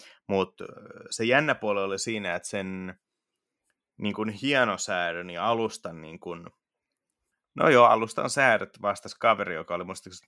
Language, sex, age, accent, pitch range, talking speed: Finnish, male, 30-49, native, 95-110 Hz, 130 wpm